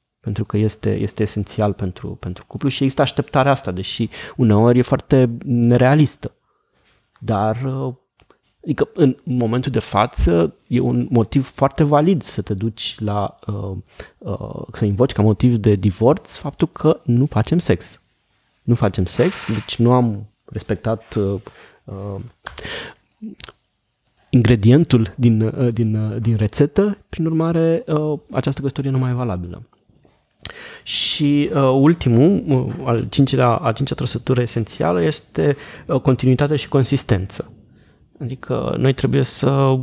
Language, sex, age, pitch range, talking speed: Romanian, male, 30-49, 105-135 Hz, 120 wpm